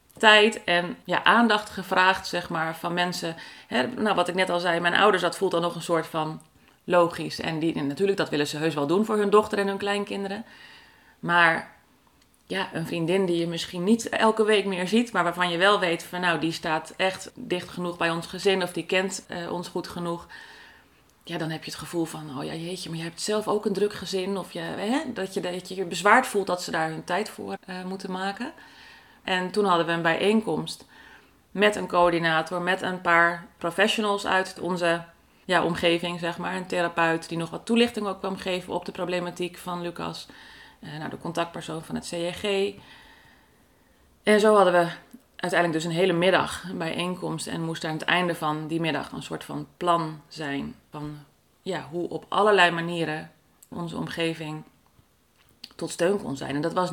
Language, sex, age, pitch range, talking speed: Dutch, female, 30-49, 170-195 Hz, 200 wpm